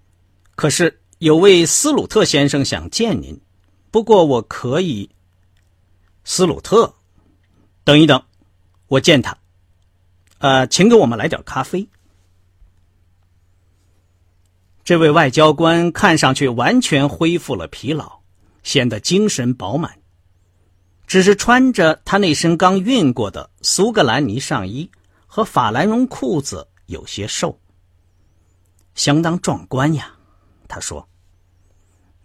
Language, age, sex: Chinese, 50-69, male